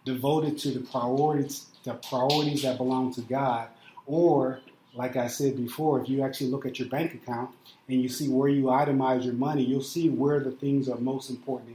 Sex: male